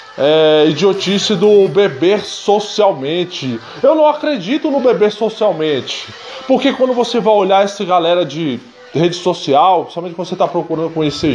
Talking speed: 145 wpm